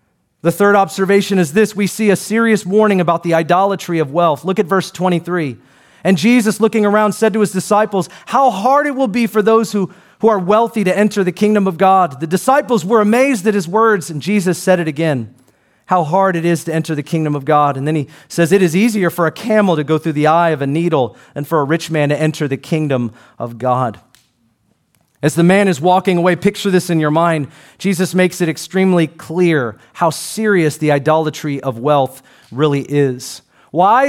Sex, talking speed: male, 210 wpm